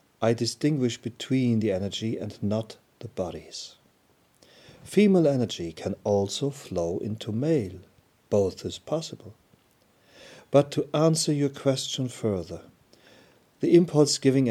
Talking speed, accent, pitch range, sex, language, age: 110 wpm, German, 100-130 Hz, male, English, 40-59